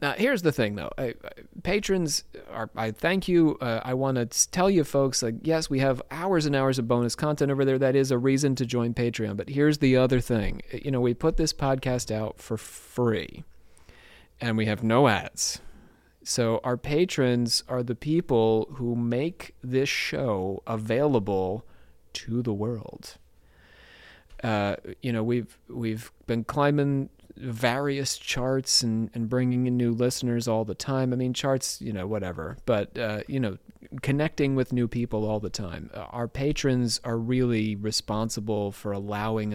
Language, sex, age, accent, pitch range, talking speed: English, male, 30-49, American, 110-135 Hz, 170 wpm